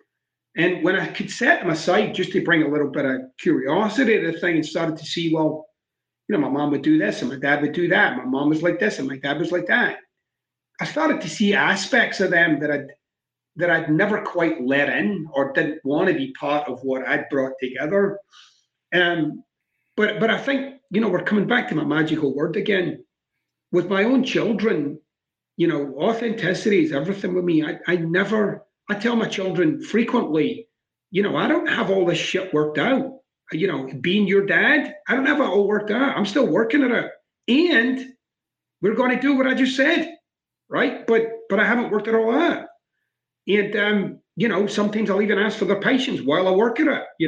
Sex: male